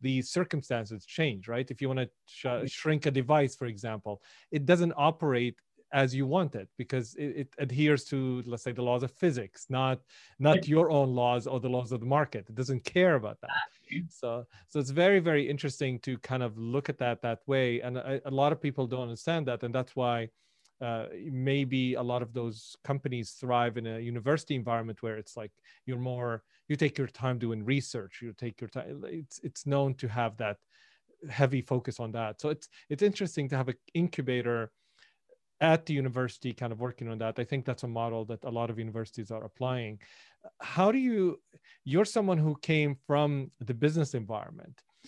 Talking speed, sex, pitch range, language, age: 200 wpm, male, 120-145 Hz, English, 30-49